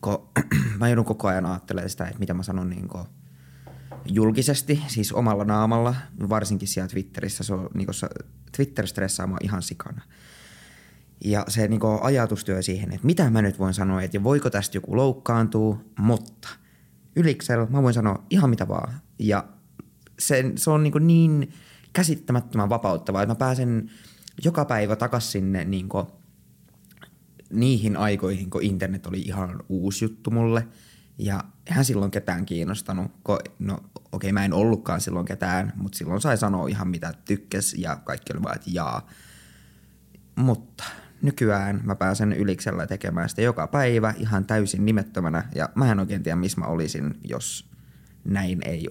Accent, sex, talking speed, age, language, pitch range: native, male, 145 wpm, 20-39, Finnish, 95-115 Hz